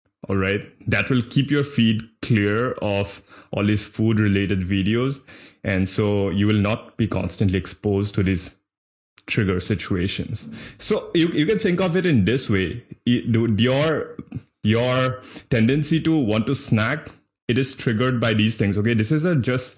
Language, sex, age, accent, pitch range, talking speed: English, male, 20-39, Indian, 100-125 Hz, 165 wpm